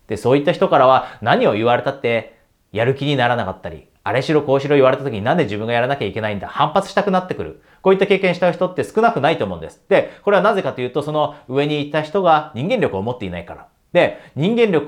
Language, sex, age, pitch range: Japanese, male, 30-49, 115-155 Hz